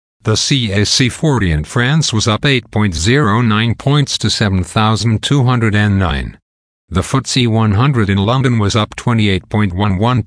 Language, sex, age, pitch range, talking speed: English, male, 50-69, 95-120 Hz, 110 wpm